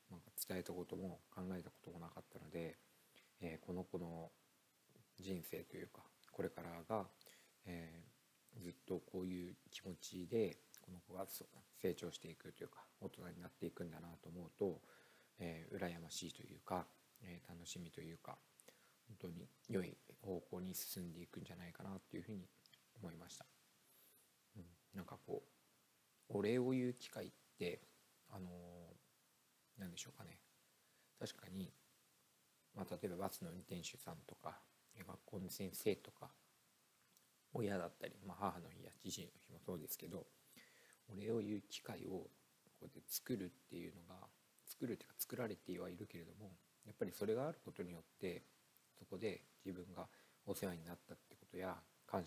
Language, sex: Japanese, male